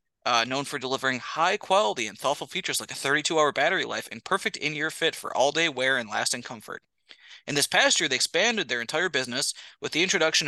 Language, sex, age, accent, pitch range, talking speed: English, male, 20-39, American, 130-175 Hz, 200 wpm